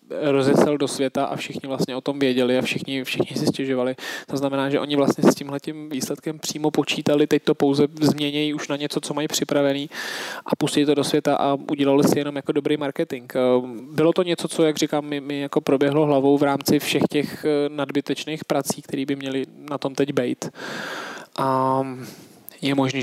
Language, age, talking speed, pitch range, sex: Czech, 20-39, 185 wpm, 130-145 Hz, male